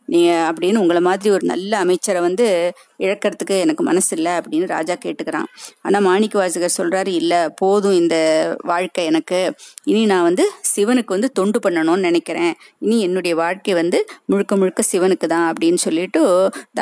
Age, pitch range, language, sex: 30-49, 180-230 Hz, Tamil, female